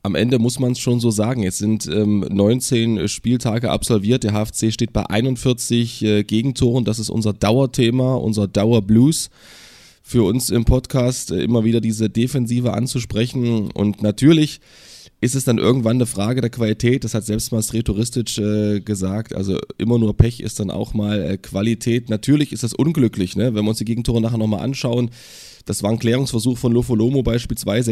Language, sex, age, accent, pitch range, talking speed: German, male, 20-39, German, 105-125 Hz, 180 wpm